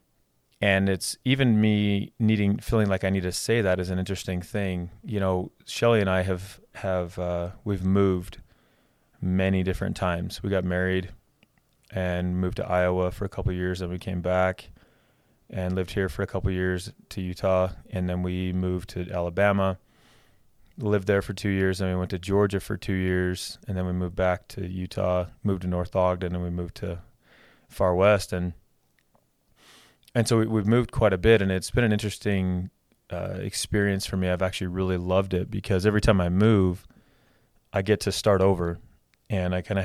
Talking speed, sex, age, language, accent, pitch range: 195 wpm, male, 30-49, English, American, 90-105 Hz